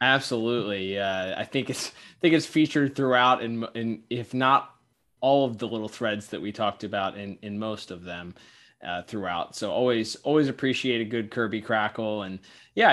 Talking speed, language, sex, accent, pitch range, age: 190 wpm, English, male, American, 105-130 Hz, 20-39